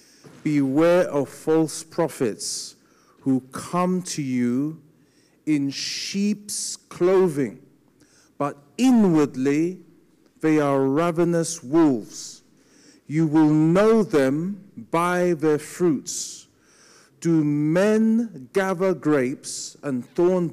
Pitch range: 130-185 Hz